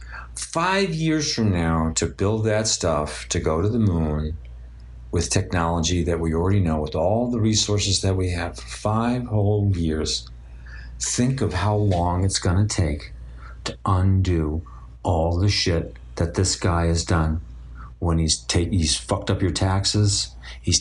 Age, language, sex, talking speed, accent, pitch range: 50-69, English, male, 160 wpm, American, 75-110 Hz